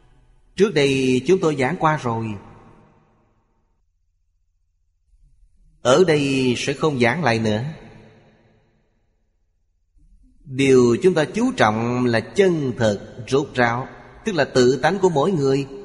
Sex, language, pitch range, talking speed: male, Vietnamese, 110-145 Hz, 115 wpm